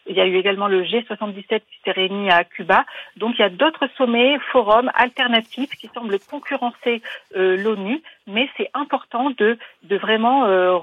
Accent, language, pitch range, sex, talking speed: French, French, 195-250 Hz, female, 175 wpm